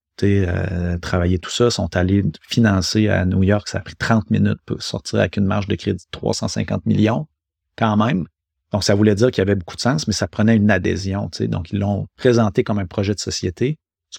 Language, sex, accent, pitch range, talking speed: French, male, Canadian, 95-110 Hz, 225 wpm